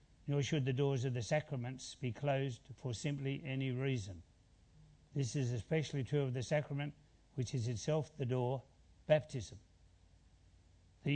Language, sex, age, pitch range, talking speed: English, male, 60-79, 115-150 Hz, 145 wpm